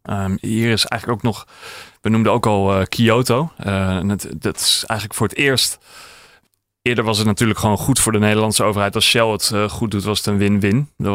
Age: 30-49